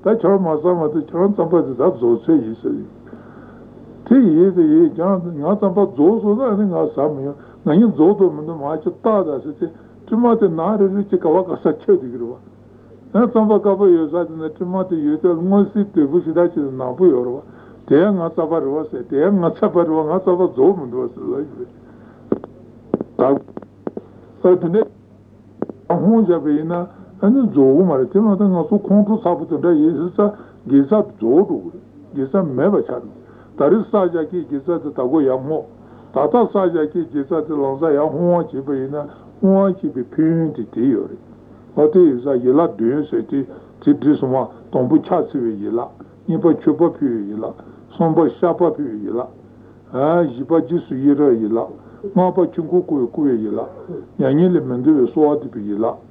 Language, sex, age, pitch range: Italian, female, 60-79, 145-200 Hz